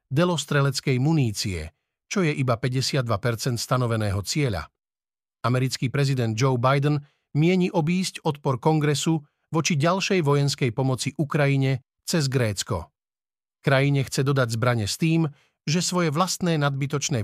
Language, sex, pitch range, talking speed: Slovak, male, 125-150 Hz, 115 wpm